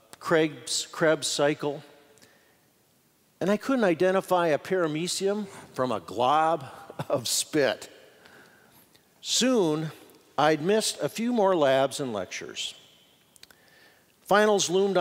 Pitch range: 145-195 Hz